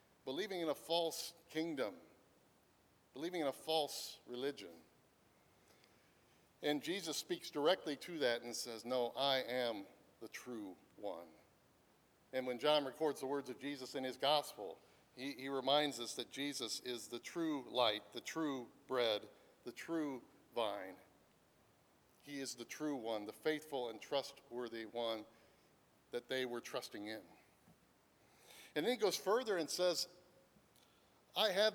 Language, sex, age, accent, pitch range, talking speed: English, male, 50-69, American, 135-175 Hz, 140 wpm